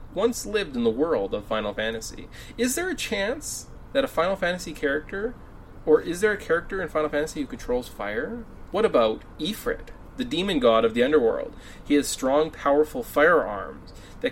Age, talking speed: 30-49, 180 wpm